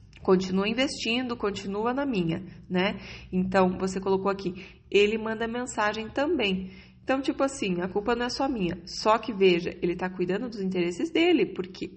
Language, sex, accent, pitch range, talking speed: Portuguese, female, Brazilian, 180-215 Hz, 165 wpm